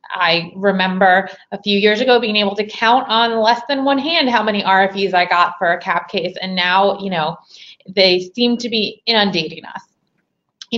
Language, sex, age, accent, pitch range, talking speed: English, female, 20-39, American, 195-265 Hz, 195 wpm